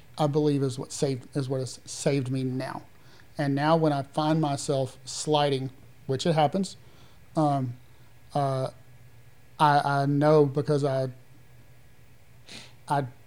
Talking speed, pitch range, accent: 130 wpm, 130-150 Hz, American